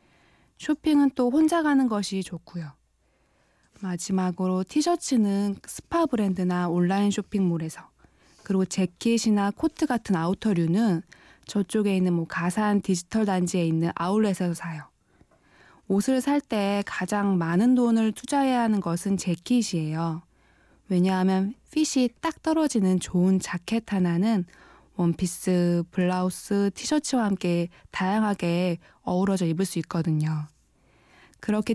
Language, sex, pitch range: Korean, female, 175-220 Hz